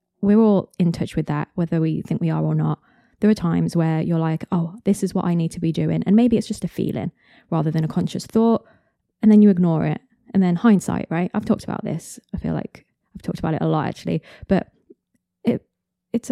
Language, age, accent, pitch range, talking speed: English, 20-39, British, 165-205 Hz, 240 wpm